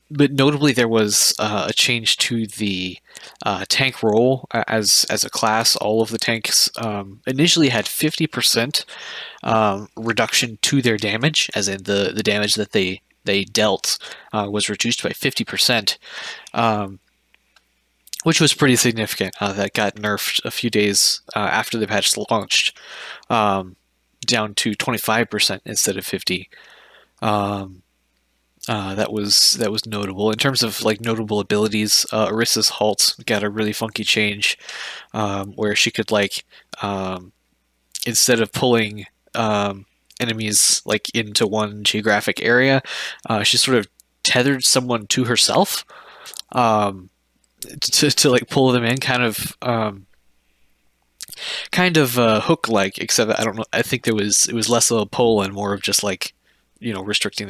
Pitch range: 100-120 Hz